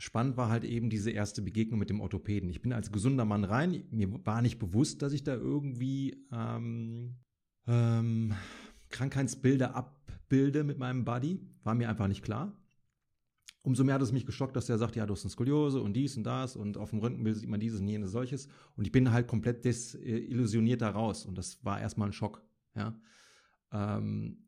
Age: 30-49